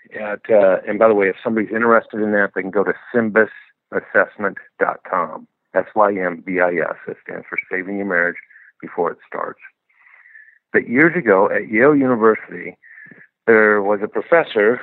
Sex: male